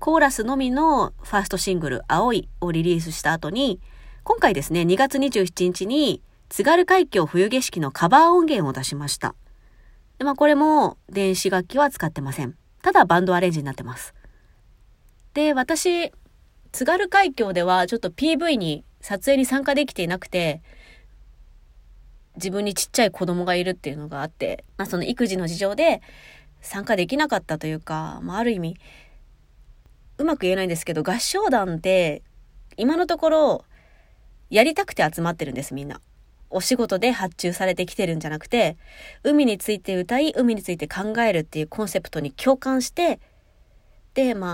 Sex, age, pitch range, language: female, 20-39, 155-260 Hz, Japanese